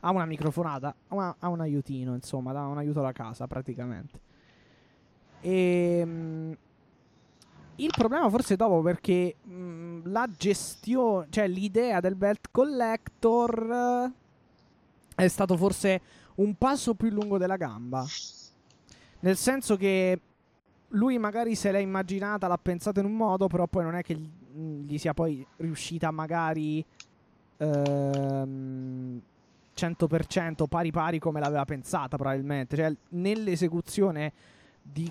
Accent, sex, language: native, male, Italian